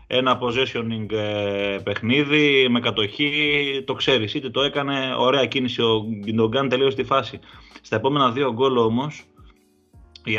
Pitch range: 105-130 Hz